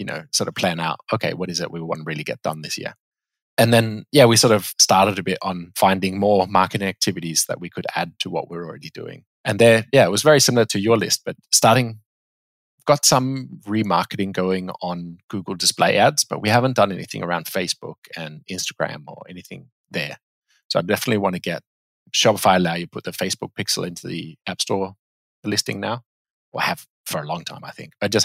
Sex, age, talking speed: male, 20-39, 215 wpm